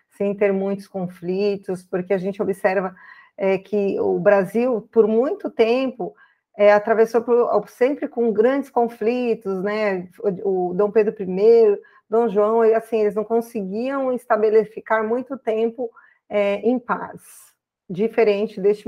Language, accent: Portuguese, Brazilian